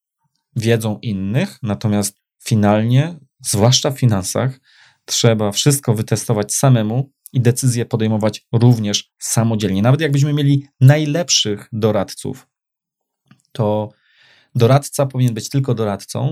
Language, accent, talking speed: Polish, native, 100 wpm